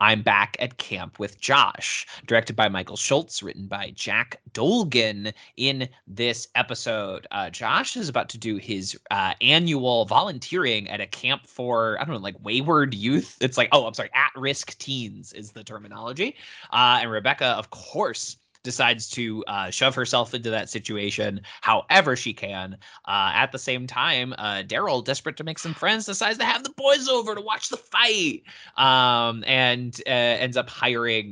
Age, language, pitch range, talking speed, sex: 20-39, English, 110-145 Hz, 175 wpm, male